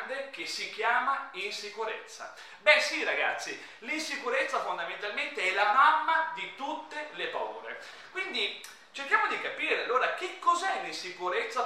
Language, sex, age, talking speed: Italian, male, 30-49, 125 wpm